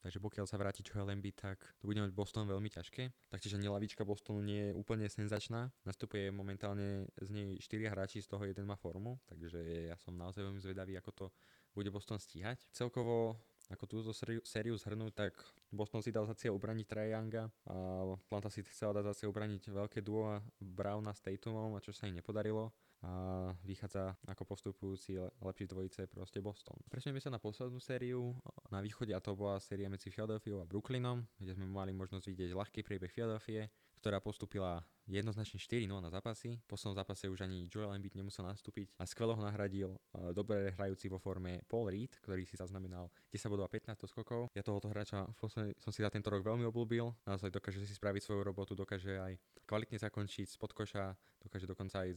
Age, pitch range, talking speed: 20-39, 95-110 Hz, 180 wpm